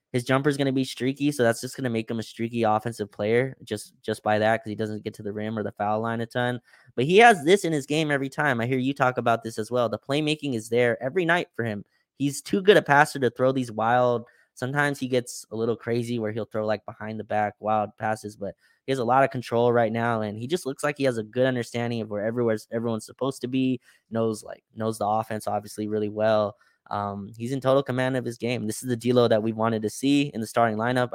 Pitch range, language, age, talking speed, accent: 110-125 Hz, English, 20-39, 265 wpm, American